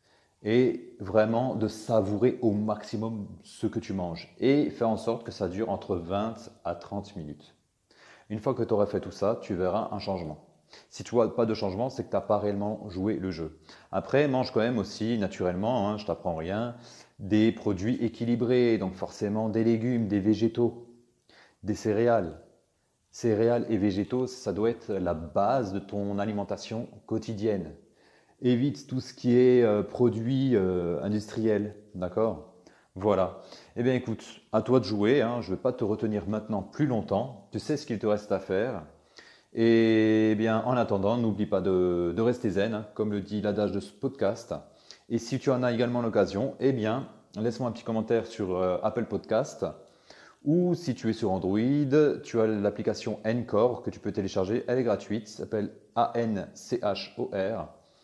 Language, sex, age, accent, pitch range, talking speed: French, male, 30-49, French, 105-120 Hz, 180 wpm